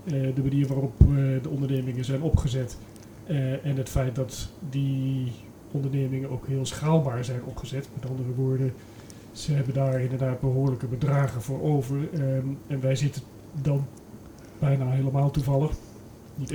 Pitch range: 130-145 Hz